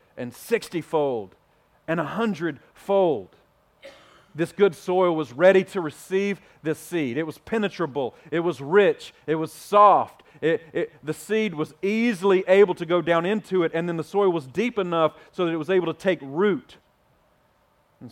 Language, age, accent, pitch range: English, 40-59, American, 145-190 Hz